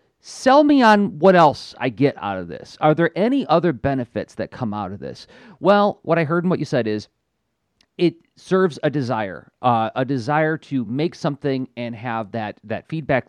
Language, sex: English, male